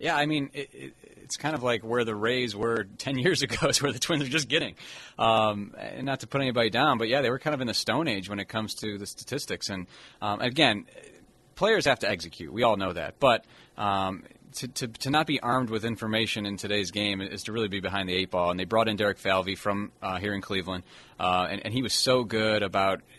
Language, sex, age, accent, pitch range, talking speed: English, male, 30-49, American, 100-120 Hz, 245 wpm